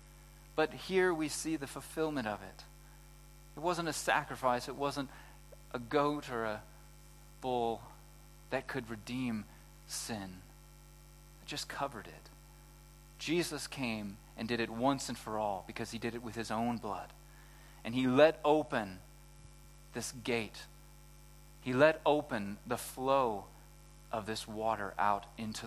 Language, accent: English, American